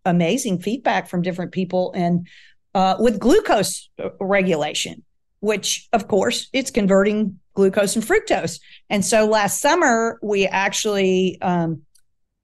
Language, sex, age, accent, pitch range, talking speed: English, female, 50-69, American, 175-220 Hz, 120 wpm